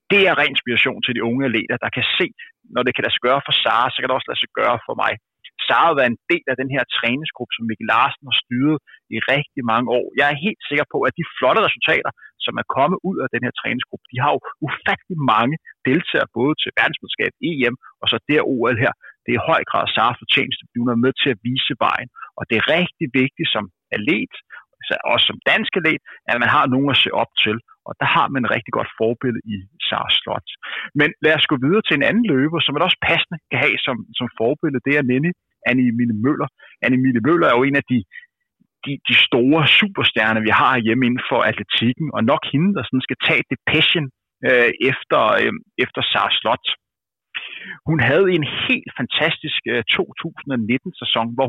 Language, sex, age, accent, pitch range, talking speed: Danish, male, 30-49, native, 120-155 Hz, 215 wpm